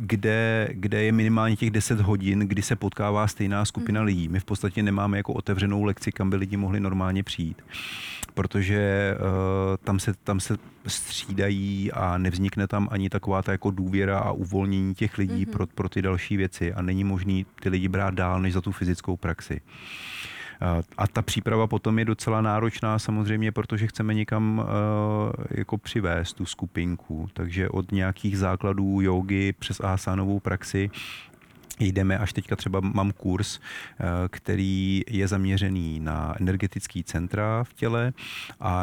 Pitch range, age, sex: 95-105 Hz, 30-49, male